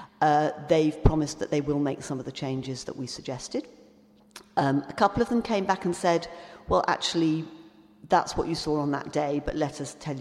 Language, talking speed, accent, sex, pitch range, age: English, 210 wpm, British, female, 130-165 Hz, 50-69